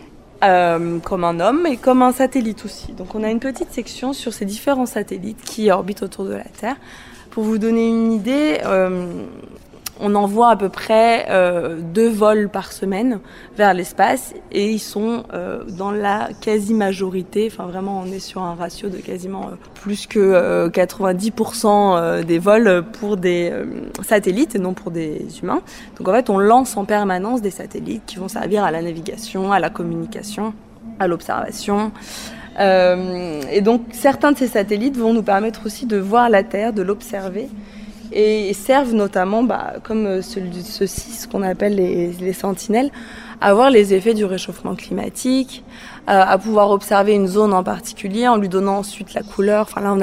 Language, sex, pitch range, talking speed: French, female, 190-225 Hz, 175 wpm